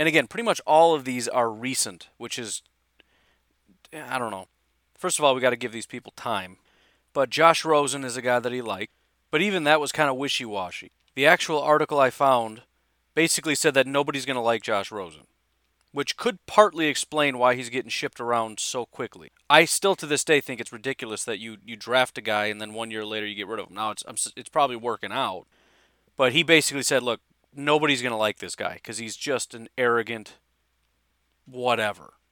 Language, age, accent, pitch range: English, 30-49, American, 115-145 Hz